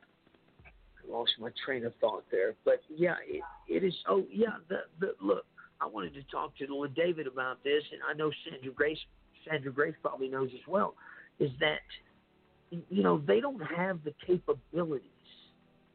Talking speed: 170 wpm